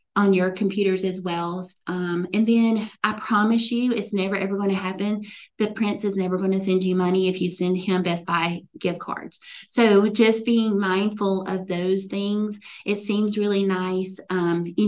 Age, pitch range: 30-49, 185-210 Hz